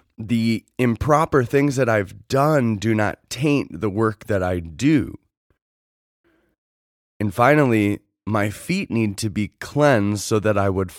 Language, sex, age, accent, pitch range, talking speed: English, male, 20-39, American, 90-115 Hz, 140 wpm